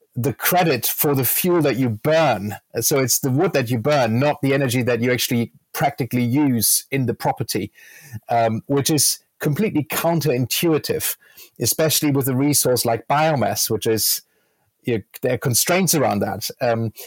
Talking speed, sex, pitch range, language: 160 wpm, male, 120-150 Hz, English